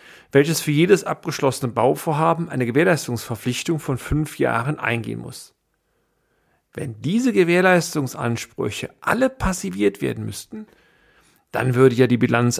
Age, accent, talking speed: 40-59, German, 115 wpm